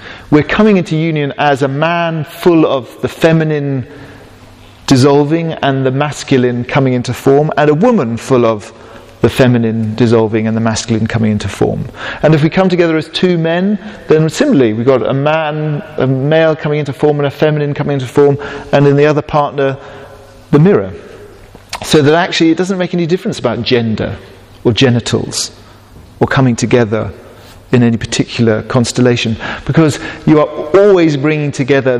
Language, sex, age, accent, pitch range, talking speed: English, male, 40-59, British, 115-150 Hz, 165 wpm